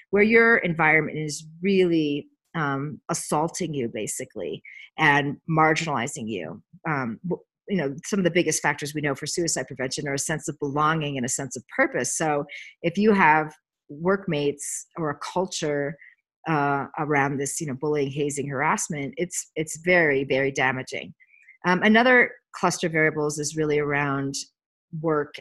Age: 40-59